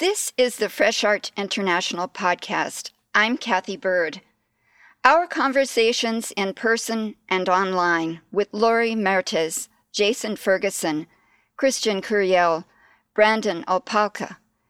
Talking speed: 100 wpm